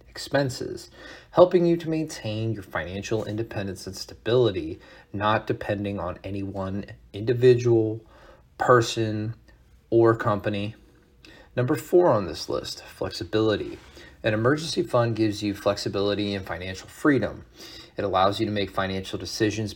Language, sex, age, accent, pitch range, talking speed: English, male, 30-49, American, 95-120 Hz, 125 wpm